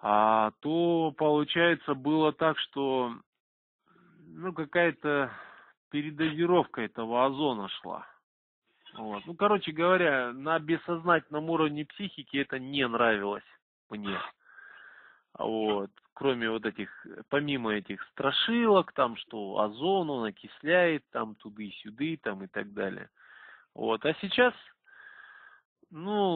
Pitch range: 110-170 Hz